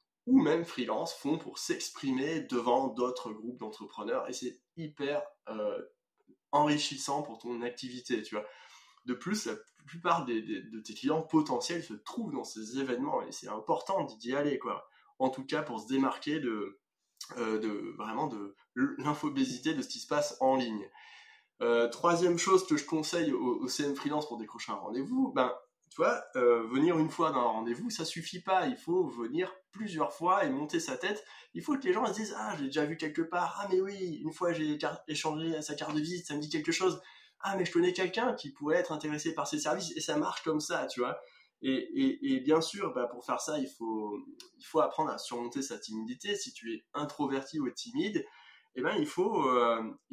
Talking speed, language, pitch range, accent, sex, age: 215 wpm, French, 130-205 Hz, French, male, 20-39